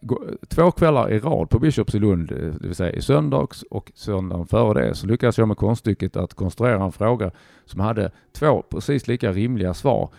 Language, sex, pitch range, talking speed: Swedish, male, 90-115 Hz, 195 wpm